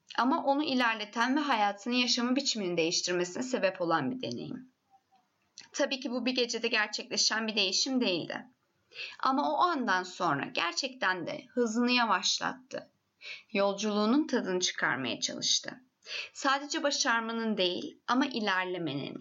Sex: female